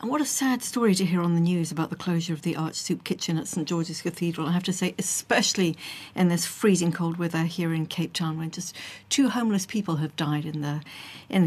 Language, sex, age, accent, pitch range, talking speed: English, female, 60-79, British, 155-195 Hz, 240 wpm